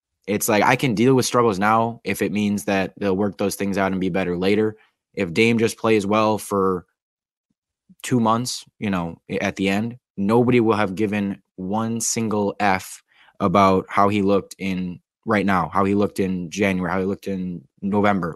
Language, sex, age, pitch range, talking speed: English, male, 20-39, 95-105 Hz, 190 wpm